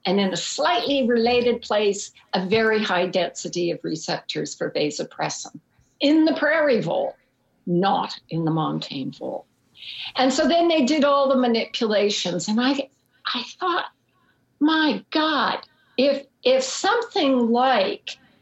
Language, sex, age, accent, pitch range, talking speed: English, female, 60-79, American, 200-270 Hz, 135 wpm